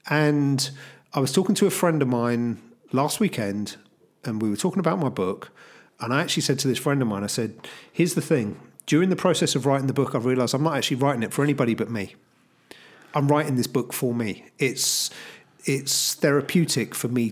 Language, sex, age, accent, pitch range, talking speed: English, male, 40-59, British, 120-150 Hz, 210 wpm